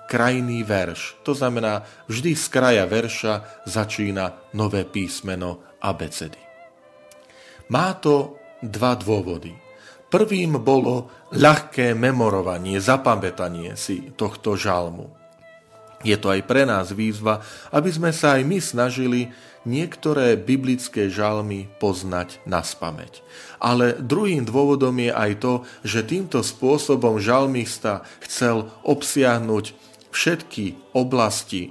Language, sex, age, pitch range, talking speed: Slovak, male, 40-59, 100-130 Hz, 110 wpm